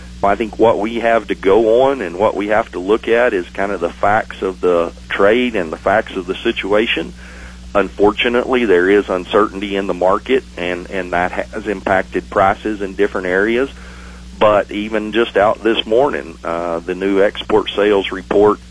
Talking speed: 185 wpm